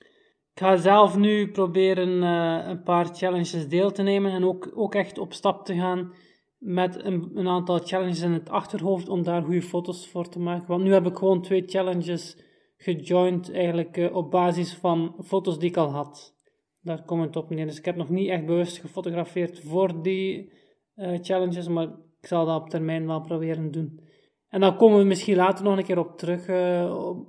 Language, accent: Dutch, Dutch